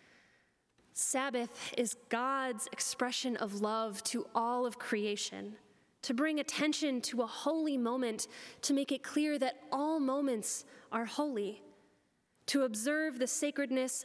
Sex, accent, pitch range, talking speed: female, American, 215-265 Hz, 130 wpm